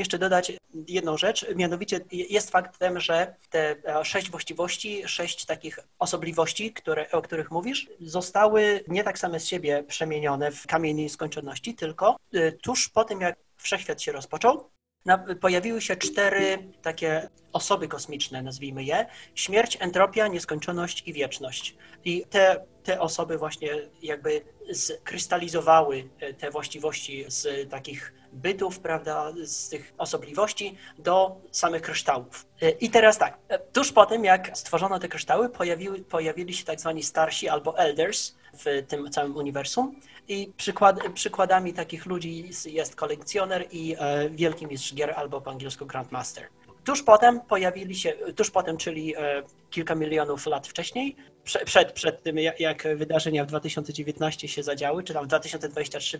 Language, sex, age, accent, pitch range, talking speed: Polish, male, 30-49, native, 155-195 Hz, 140 wpm